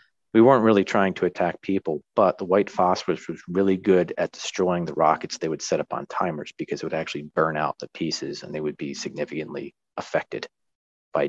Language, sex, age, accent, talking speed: English, male, 40-59, American, 205 wpm